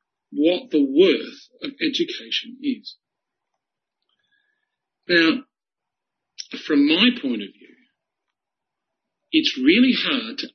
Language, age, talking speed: English, 50-69, 90 wpm